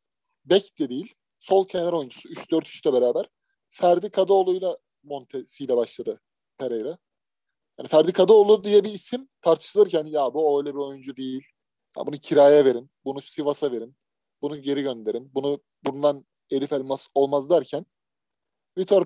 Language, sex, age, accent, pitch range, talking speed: Turkish, male, 30-49, native, 140-205 Hz, 140 wpm